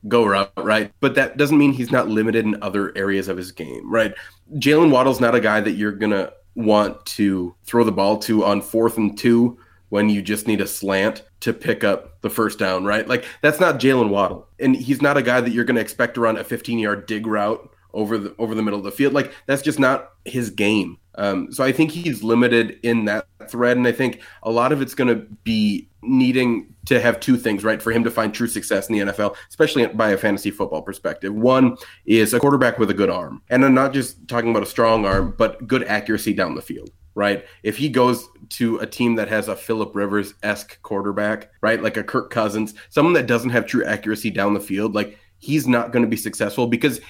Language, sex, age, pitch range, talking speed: English, male, 30-49, 105-125 Hz, 230 wpm